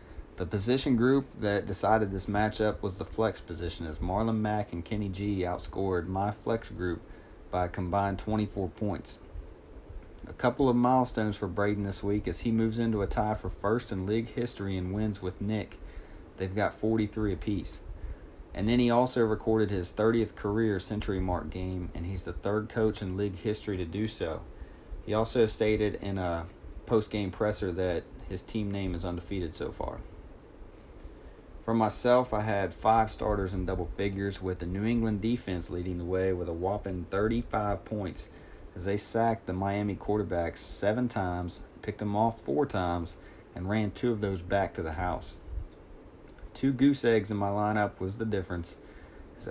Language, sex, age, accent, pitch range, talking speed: English, male, 30-49, American, 90-110 Hz, 175 wpm